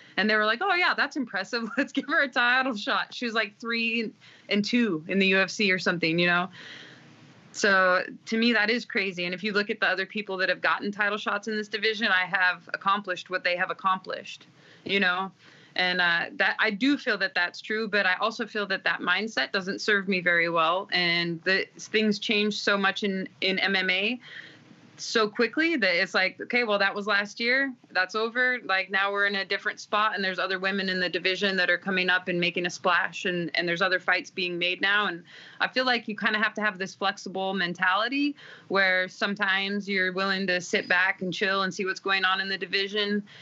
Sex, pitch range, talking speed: female, 180-215 Hz, 225 wpm